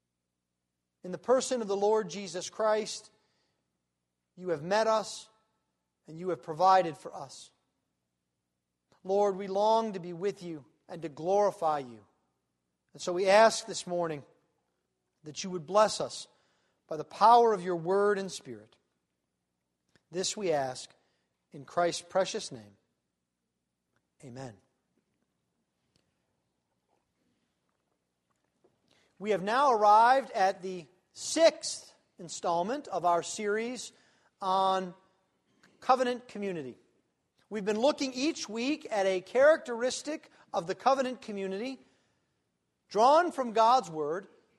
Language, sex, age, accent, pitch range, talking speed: English, male, 40-59, American, 160-240 Hz, 115 wpm